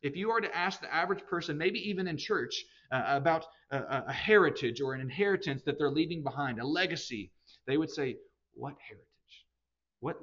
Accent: American